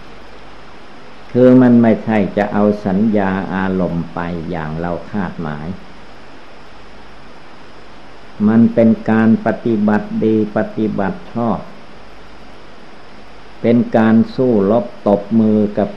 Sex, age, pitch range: male, 60-79, 90-110 Hz